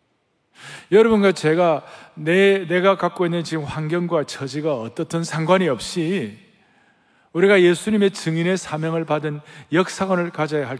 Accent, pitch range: native, 145-200 Hz